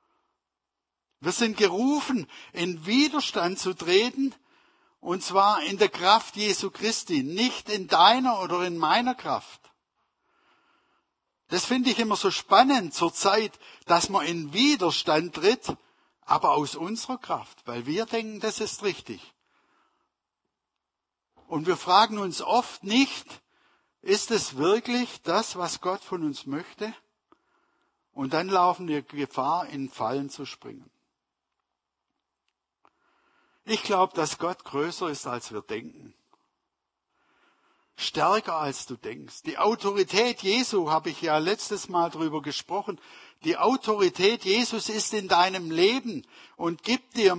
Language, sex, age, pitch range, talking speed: German, male, 60-79, 170-250 Hz, 130 wpm